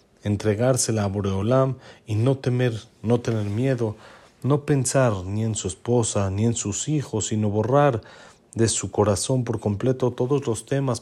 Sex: male